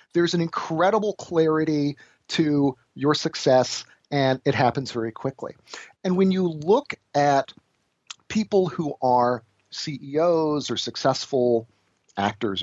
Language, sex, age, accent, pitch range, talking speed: English, male, 40-59, American, 125-165 Hz, 115 wpm